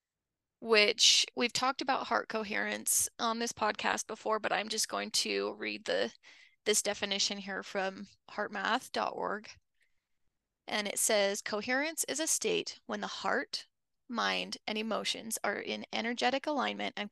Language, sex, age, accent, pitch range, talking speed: English, female, 20-39, American, 190-265 Hz, 140 wpm